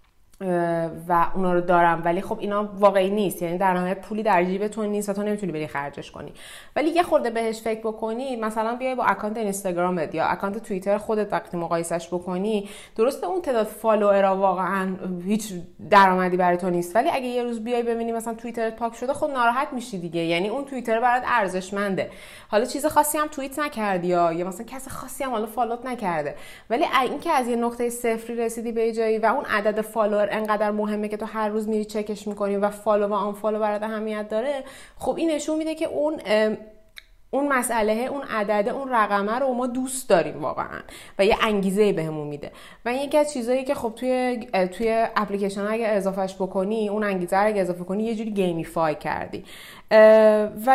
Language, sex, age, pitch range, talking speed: Persian, female, 20-39, 190-235 Hz, 185 wpm